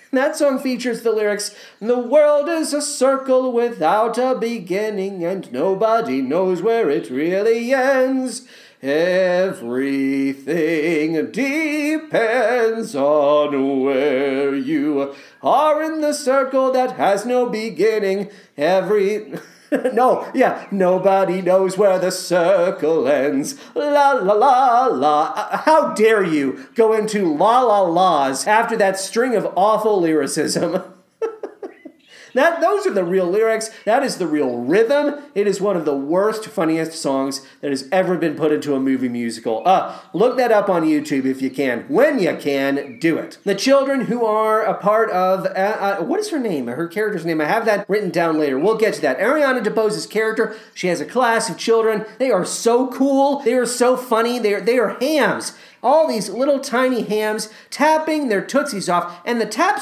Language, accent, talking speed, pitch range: English, American, 165 wpm, 180-260 Hz